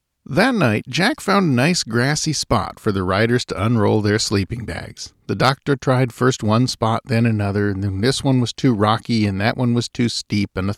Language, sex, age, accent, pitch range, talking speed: English, male, 50-69, American, 100-150 Hz, 215 wpm